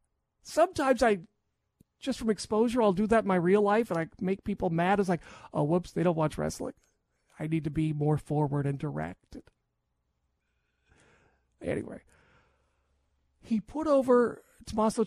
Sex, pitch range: male, 170-230 Hz